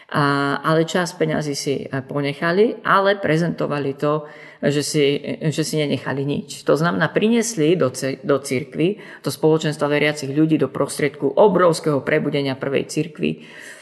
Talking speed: 130 wpm